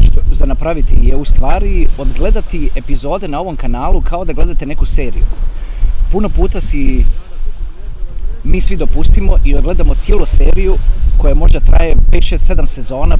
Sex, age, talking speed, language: male, 30-49, 145 wpm, Croatian